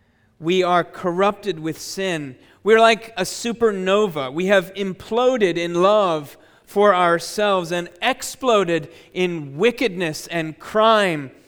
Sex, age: male, 40-59